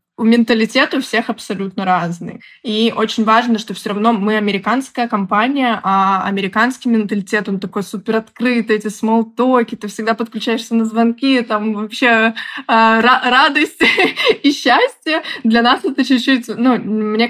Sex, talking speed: female, 140 wpm